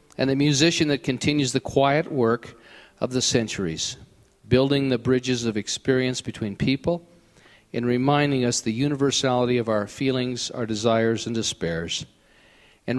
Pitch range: 110-135 Hz